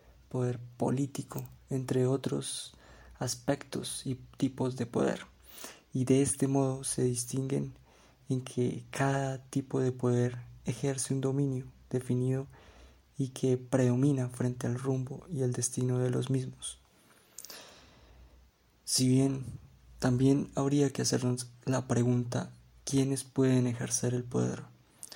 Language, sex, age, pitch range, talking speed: Spanish, male, 20-39, 120-135 Hz, 120 wpm